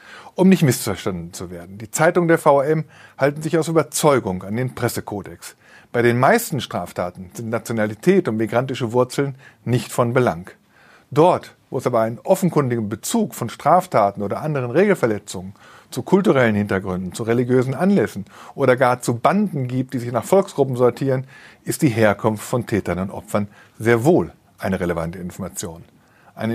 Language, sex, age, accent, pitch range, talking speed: German, male, 50-69, German, 110-155 Hz, 155 wpm